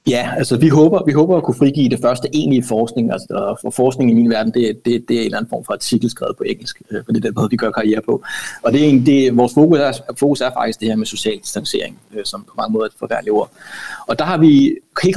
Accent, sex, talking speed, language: native, male, 275 wpm, Danish